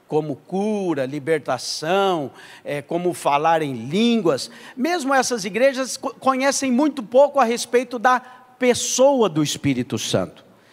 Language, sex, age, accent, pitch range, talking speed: English, male, 50-69, Brazilian, 175-255 Hz, 110 wpm